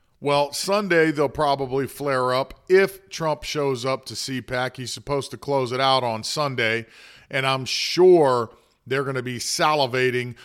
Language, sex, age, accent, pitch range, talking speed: English, male, 40-59, American, 125-150 Hz, 160 wpm